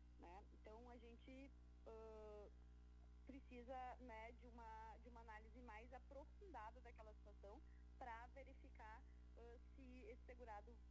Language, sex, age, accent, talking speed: Portuguese, female, 20-39, Brazilian, 115 wpm